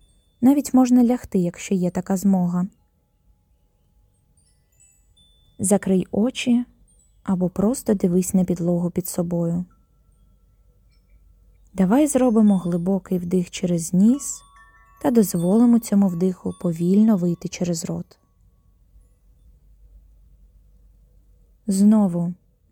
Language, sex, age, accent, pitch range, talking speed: Ukrainian, female, 20-39, native, 175-215 Hz, 80 wpm